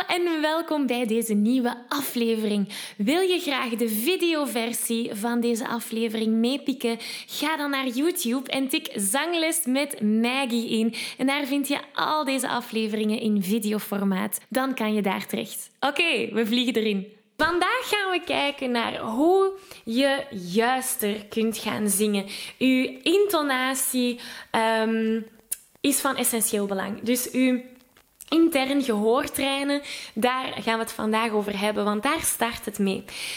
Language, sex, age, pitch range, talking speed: Dutch, female, 10-29, 225-300 Hz, 135 wpm